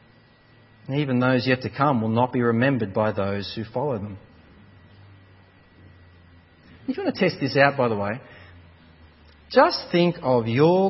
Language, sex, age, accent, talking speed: English, male, 40-59, Australian, 155 wpm